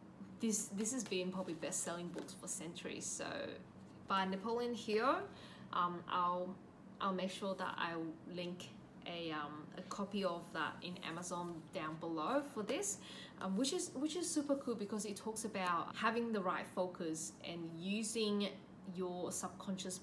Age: 20-39